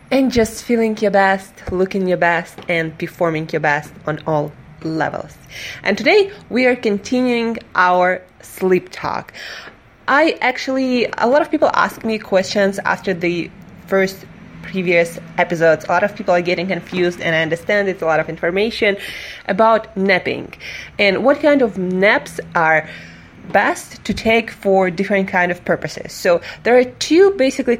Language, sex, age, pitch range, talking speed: English, female, 20-39, 180-225 Hz, 160 wpm